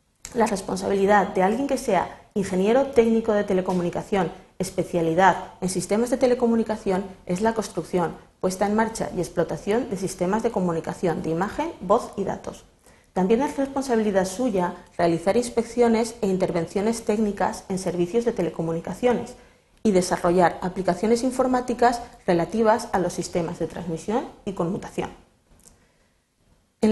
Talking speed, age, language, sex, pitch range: 130 wpm, 30-49, Spanish, female, 175-225 Hz